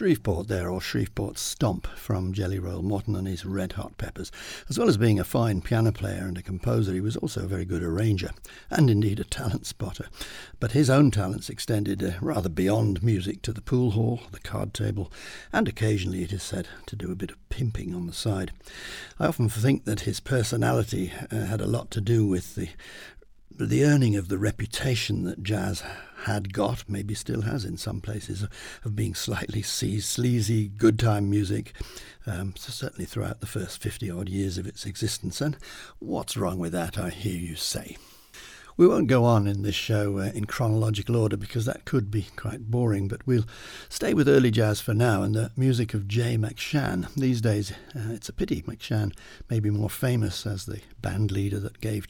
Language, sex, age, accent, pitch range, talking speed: English, male, 60-79, British, 100-115 Hz, 195 wpm